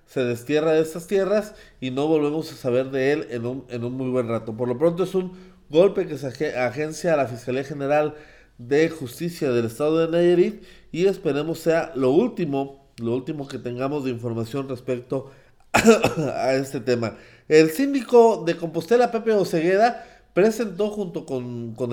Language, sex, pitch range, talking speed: Spanish, male, 130-170 Hz, 180 wpm